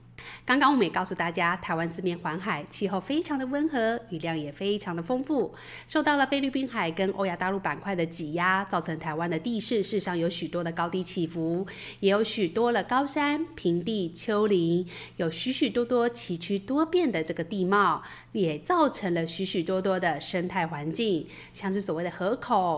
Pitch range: 175-240 Hz